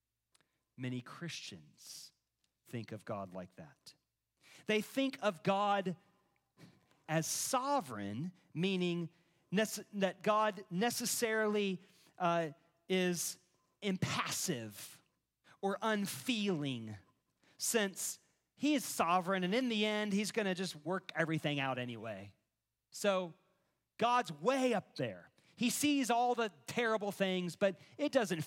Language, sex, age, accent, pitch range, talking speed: English, male, 40-59, American, 130-205 Hz, 110 wpm